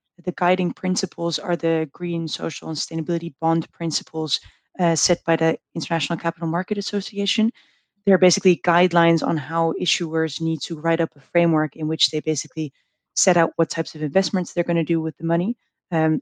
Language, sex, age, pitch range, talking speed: English, female, 20-39, 155-175 Hz, 180 wpm